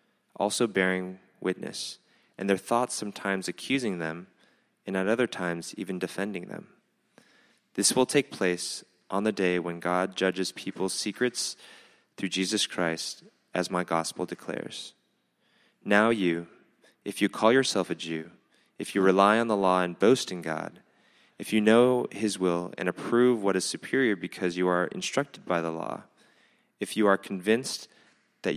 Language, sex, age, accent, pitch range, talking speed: English, male, 20-39, American, 90-115 Hz, 160 wpm